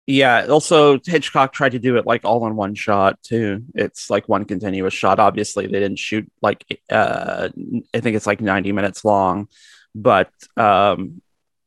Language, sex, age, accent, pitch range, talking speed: English, male, 30-49, American, 115-145 Hz, 170 wpm